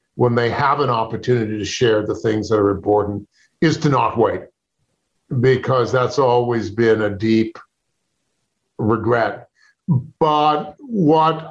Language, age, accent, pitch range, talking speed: English, 50-69, American, 115-135 Hz, 130 wpm